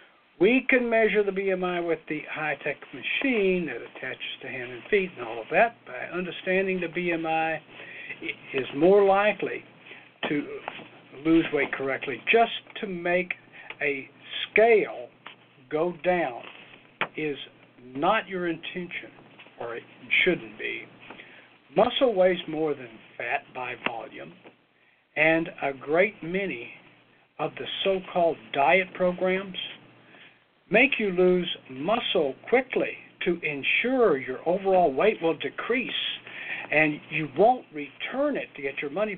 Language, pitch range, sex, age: English, 155-210 Hz, male, 60-79